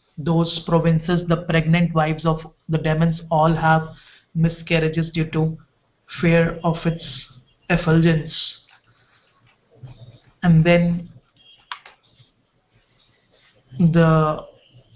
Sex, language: male, English